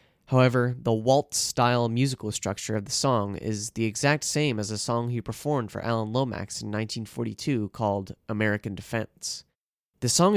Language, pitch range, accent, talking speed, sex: English, 110-130 Hz, American, 155 wpm, male